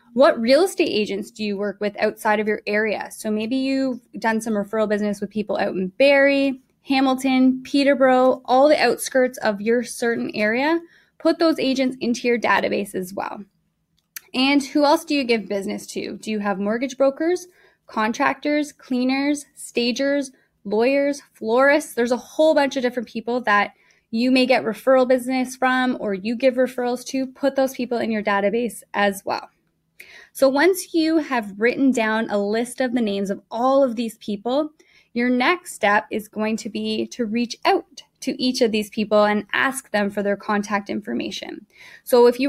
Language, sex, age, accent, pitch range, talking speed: English, female, 10-29, American, 215-270 Hz, 180 wpm